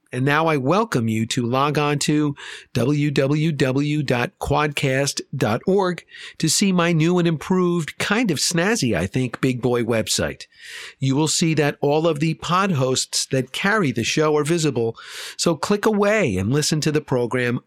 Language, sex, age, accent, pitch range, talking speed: English, male, 50-69, American, 130-165 Hz, 160 wpm